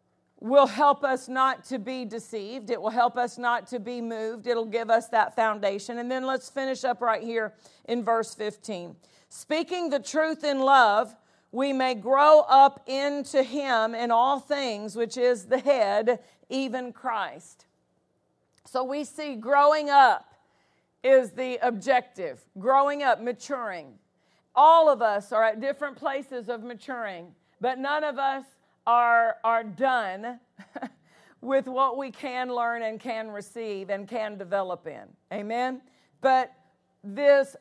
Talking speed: 145 wpm